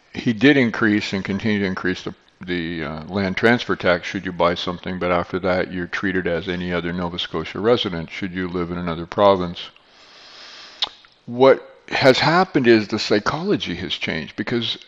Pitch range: 90-105 Hz